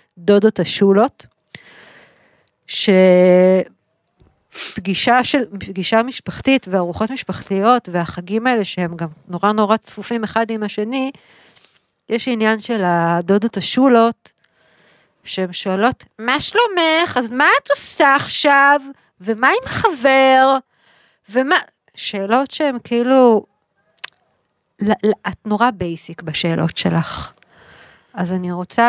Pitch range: 190-260 Hz